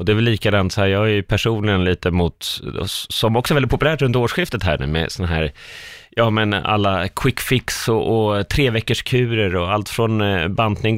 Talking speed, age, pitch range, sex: 210 wpm, 30-49, 85-115 Hz, male